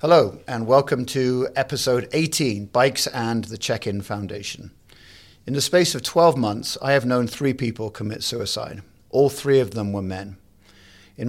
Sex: male